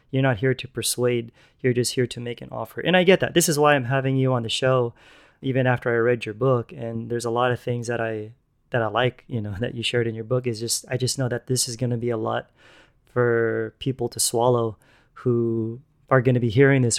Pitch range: 120-135 Hz